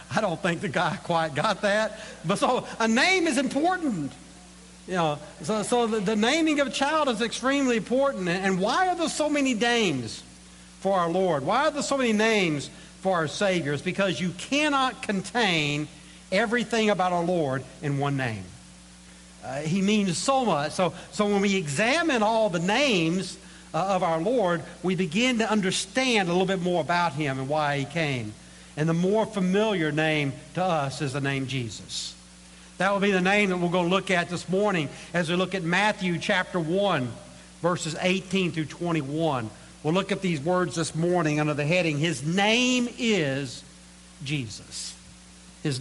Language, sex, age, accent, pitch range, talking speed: English, male, 60-79, American, 145-210 Hz, 180 wpm